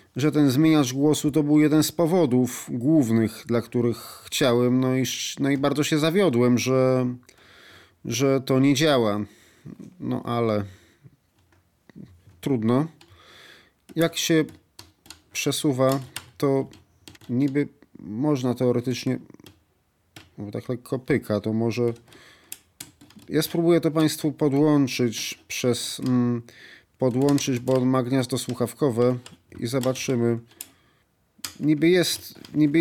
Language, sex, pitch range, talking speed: Polish, male, 120-150 Hz, 100 wpm